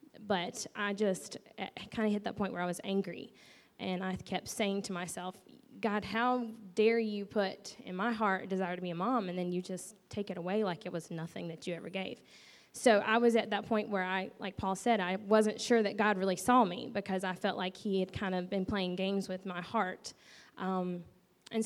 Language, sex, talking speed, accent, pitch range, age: English, female, 225 wpm, American, 185-215 Hz, 20-39